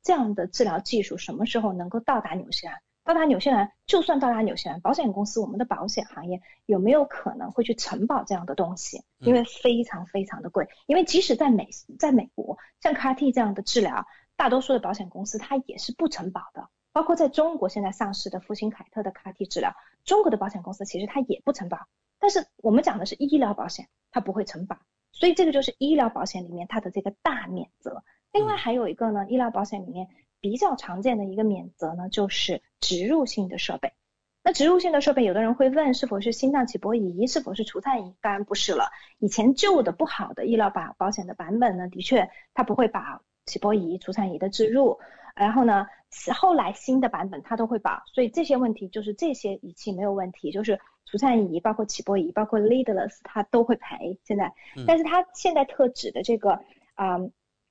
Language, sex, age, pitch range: English, female, 30-49, 200-265 Hz